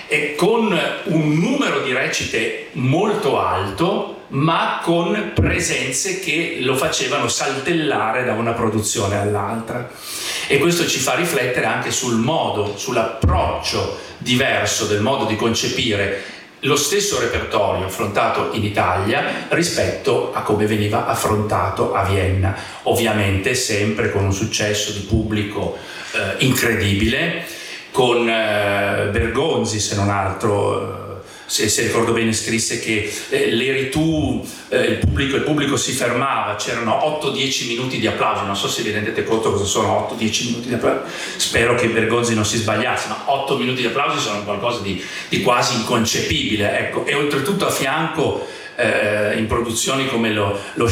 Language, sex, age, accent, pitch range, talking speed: Italian, male, 40-59, native, 100-120 Hz, 145 wpm